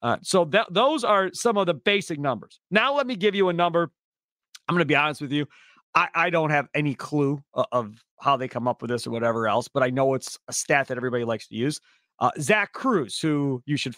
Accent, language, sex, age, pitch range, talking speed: American, English, male, 40-59, 145-240 Hz, 250 wpm